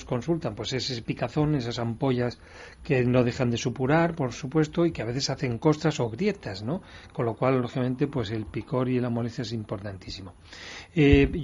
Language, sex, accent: Spanish, male, Spanish